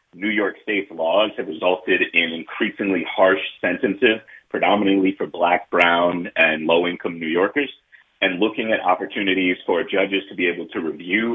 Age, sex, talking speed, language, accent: 30-49, male, 155 wpm, English, American